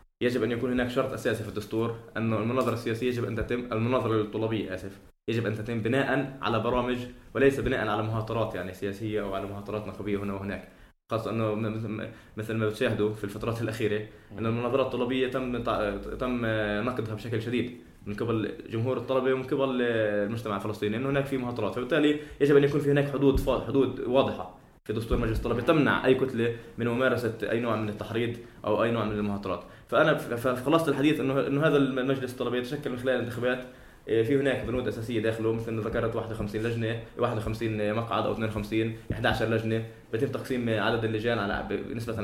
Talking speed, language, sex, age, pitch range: 175 wpm, English, male, 20-39, 105-125 Hz